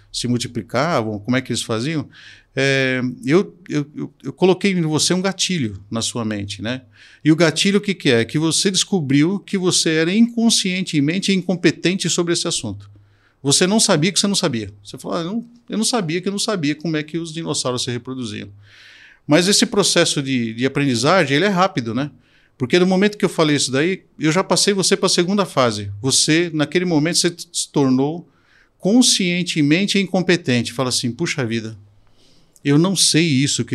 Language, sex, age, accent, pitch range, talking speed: Portuguese, male, 50-69, Brazilian, 120-175 Hz, 190 wpm